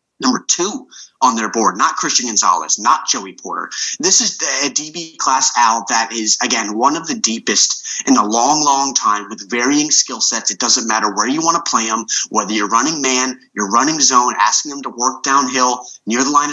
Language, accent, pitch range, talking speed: English, American, 135-215 Hz, 205 wpm